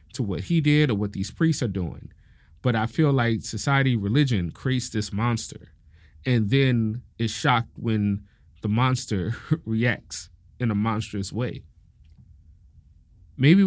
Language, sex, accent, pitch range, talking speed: English, male, American, 90-135 Hz, 140 wpm